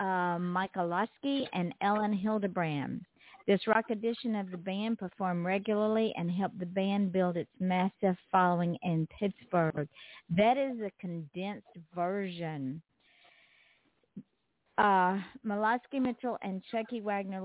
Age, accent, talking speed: 50-69, American, 120 wpm